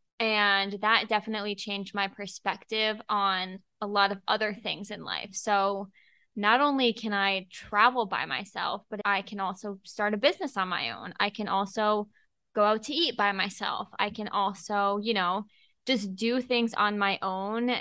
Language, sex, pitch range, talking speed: English, female, 190-215 Hz, 175 wpm